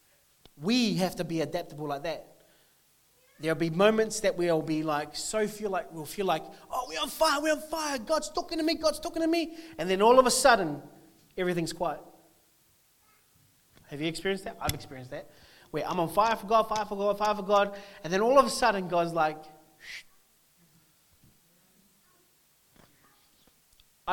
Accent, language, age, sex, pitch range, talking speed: Australian, English, 30-49, male, 150-210 Hz, 175 wpm